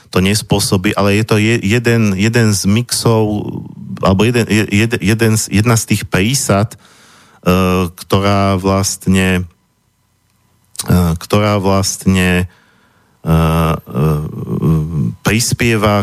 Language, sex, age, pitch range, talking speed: Slovak, male, 40-59, 90-105 Hz, 100 wpm